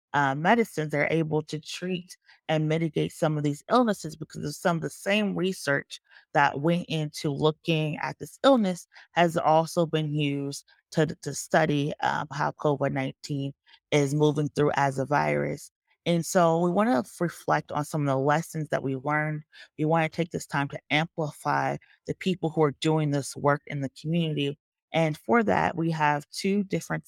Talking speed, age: 180 wpm, 30-49